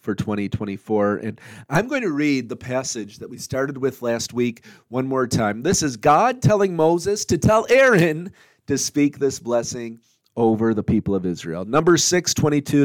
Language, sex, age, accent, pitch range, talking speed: English, male, 40-59, American, 125-180 Hz, 180 wpm